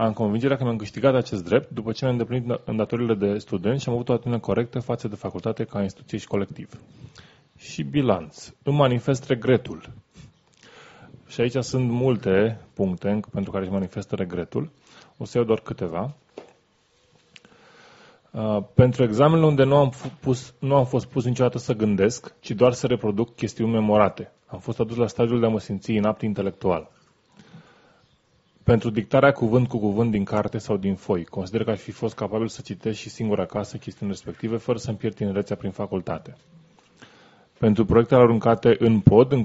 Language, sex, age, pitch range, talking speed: Romanian, male, 20-39, 105-125 Hz, 170 wpm